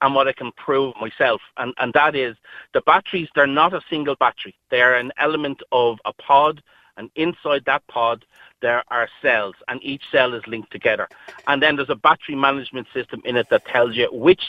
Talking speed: 205 wpm